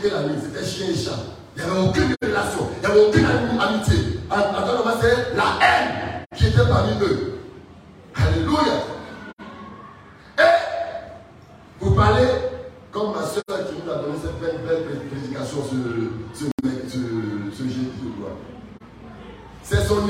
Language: French